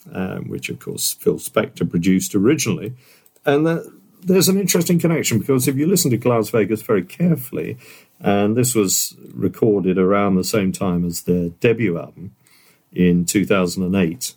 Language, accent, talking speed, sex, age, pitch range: English, British, 150 wpm, male, 50-69, 90-125 Hz